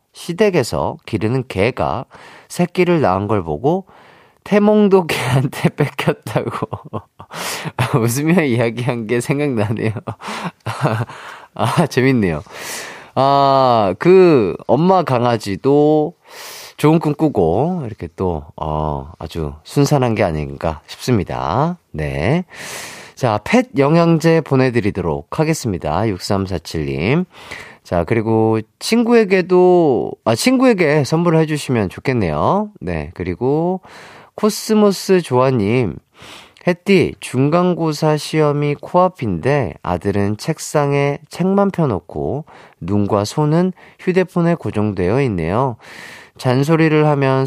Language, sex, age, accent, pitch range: Korean, male, 30-49, native, 105-170 Hz